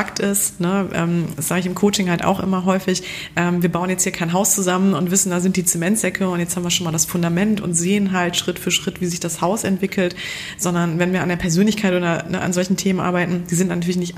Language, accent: German, German